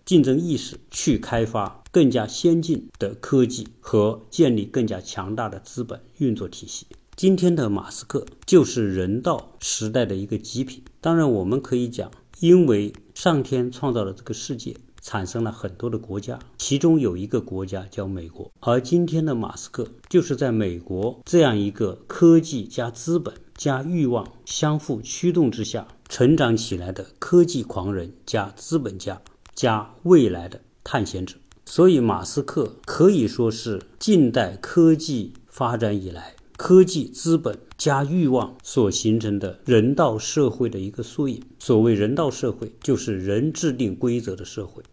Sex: male